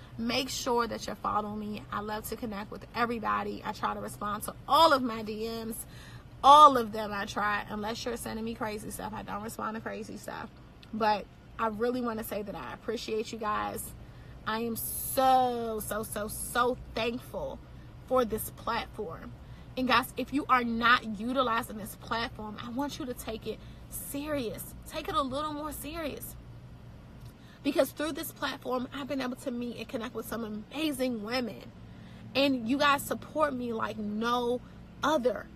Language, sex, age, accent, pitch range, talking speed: English, female, 30-49, American, 225-255 Hz, 175 wpm